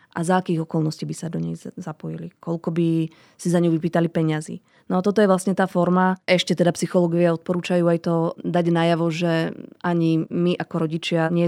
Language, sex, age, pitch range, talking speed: Slovak, female, 20-39, 160-175 Hz, 195 wpm